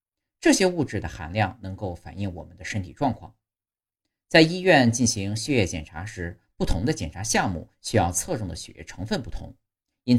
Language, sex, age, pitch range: Chinese, male, 50-69, 90-125 Hz